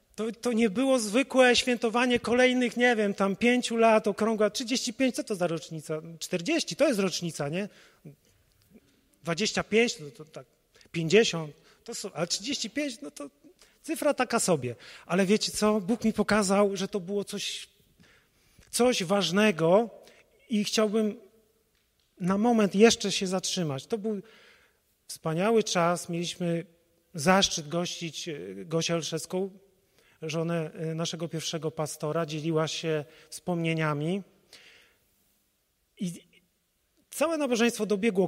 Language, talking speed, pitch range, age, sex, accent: Polish, 120 wpm, 170-220 Hz, 30-49, male, native